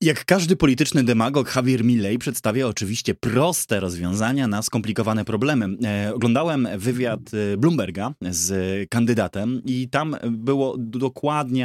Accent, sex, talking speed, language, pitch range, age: native, male, 115 wpm, Polish, 100-125 Hz, 20-39